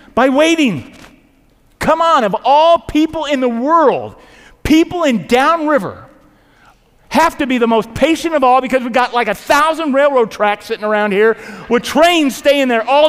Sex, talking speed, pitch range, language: male, 170 wpm, 155-250 Hz, English